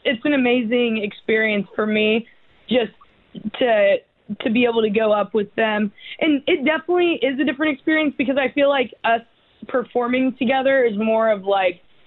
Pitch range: 195-245 Hz